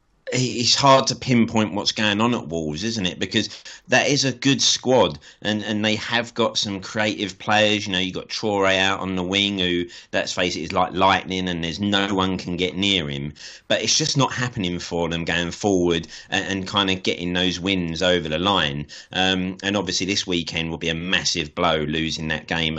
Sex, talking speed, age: male, 215 wpm, 30-49